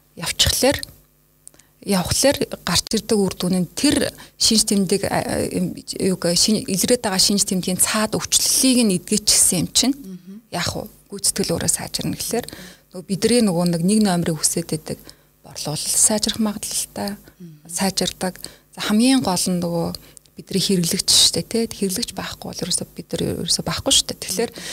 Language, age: Russian, 30-49